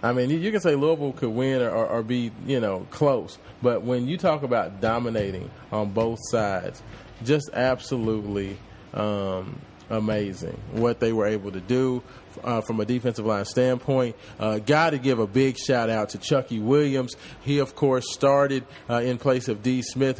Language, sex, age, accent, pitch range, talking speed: English, male, 30-49, American, 115-135 Hz, 180 wpm